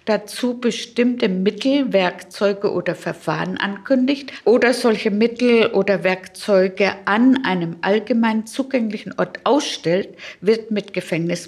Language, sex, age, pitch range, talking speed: German, female, 50-69, 175-215 Hz, 110 wpm